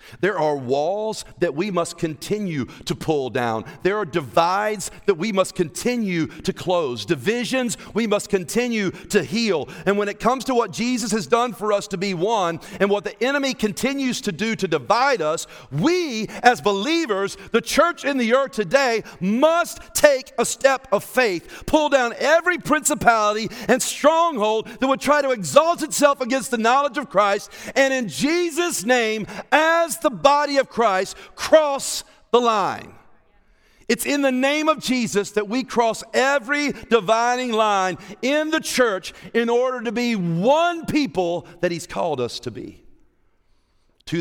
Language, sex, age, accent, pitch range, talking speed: English, male, 40-59, American, 175-240 Hz, 165 wpm